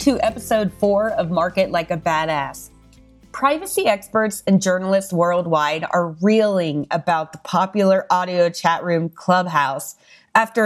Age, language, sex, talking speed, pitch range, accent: 30-49, English, female, 130 wpm, 175-225 Hz, American